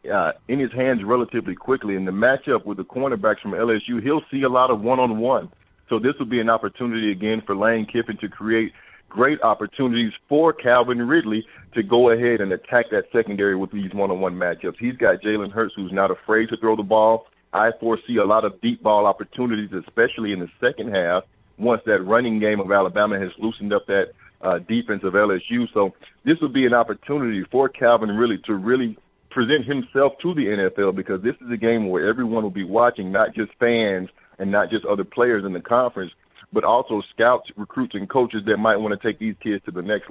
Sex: male